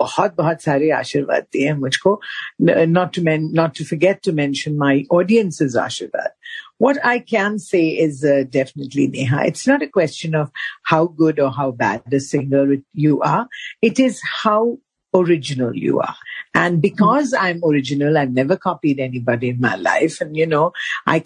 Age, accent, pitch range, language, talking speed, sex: 50-69, native, 150-215 Hz, Hindi, 145 wpm, female